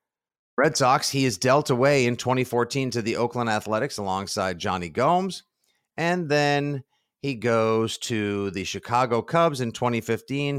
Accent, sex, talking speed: American, male, 140 wpm